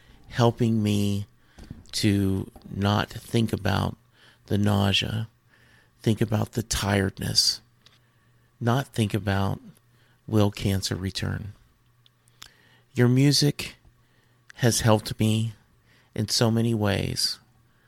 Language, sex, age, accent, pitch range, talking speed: English, male, 50-69, American, 100-120 Hz, 90 wpm